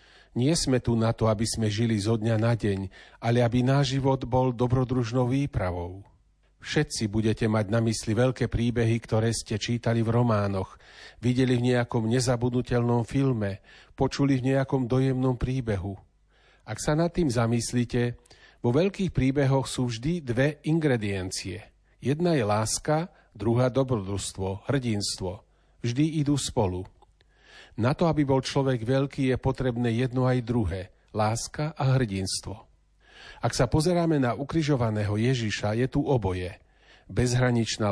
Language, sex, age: Slovak, male, 40-59